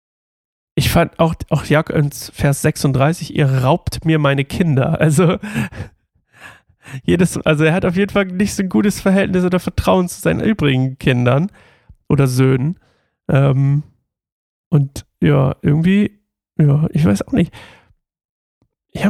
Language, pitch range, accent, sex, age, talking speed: German, 130-165 Hz, German, male, 40-59, 130 wpm